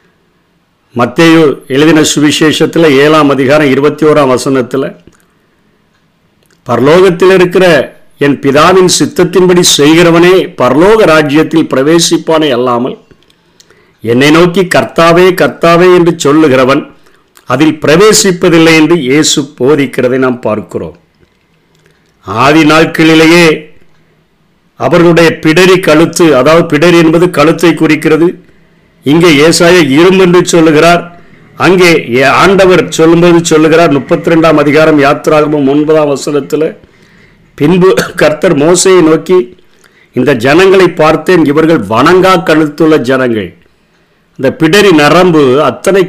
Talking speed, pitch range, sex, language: 90 wpm, 150-175 Hz, male, Tamil